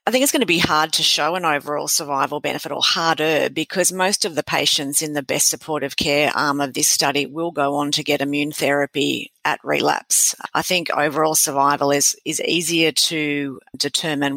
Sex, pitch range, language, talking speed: female, 140-160 Hz, English, 195 wpm